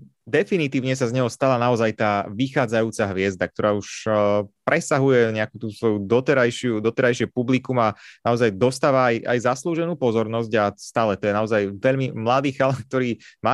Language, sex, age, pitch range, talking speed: Slovak, male, 30-49, 110-130 Hz, 155 wpm